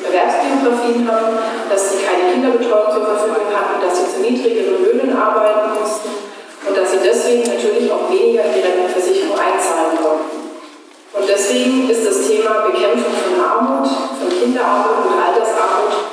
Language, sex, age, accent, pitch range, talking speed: German, female, 30-49, German, 200-305 Hz, 145 wpm